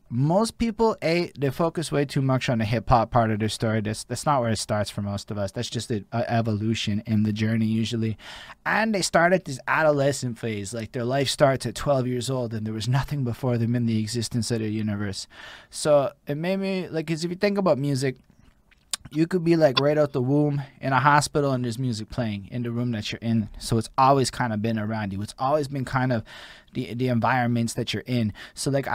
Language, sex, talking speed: English, male, 235 wpm